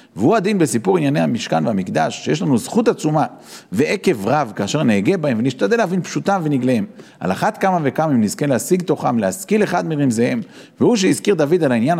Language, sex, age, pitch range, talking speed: Hebrew, male, 40-59, 125-185 Hz, 175 wpm